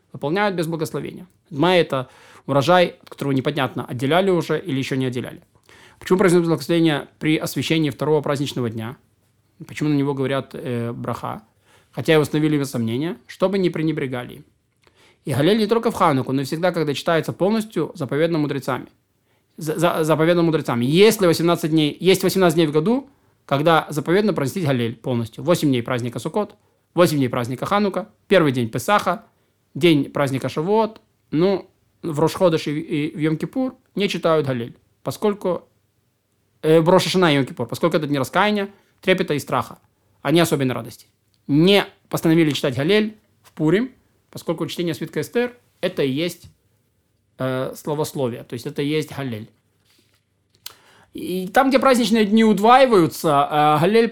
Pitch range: 130-180 Hz